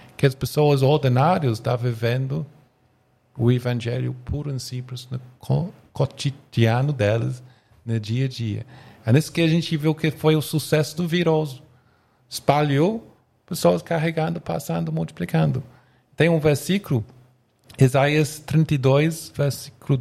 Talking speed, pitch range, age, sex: 125 wpm, 120-145 Hz, 40-59, male